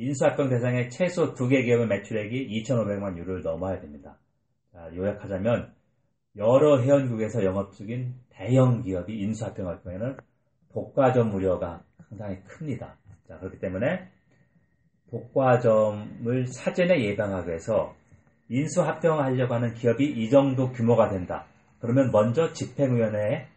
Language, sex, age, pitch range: Korean, male, 40-59, 100-135 Hz